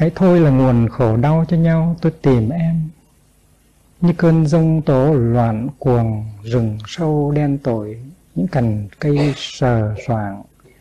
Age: 60-79